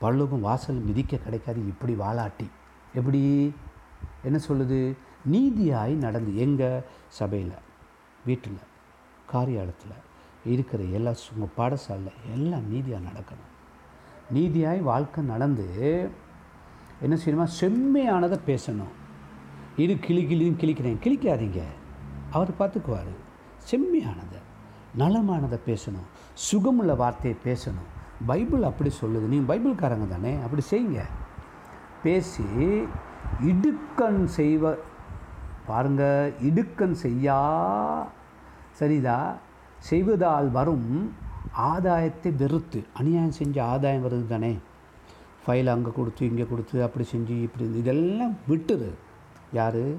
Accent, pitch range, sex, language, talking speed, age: native, 110-160 Hz, male, Tamil, 90 wpm, 60-79